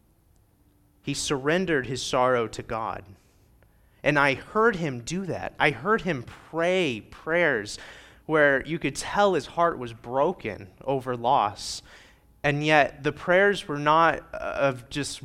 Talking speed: 140 wpm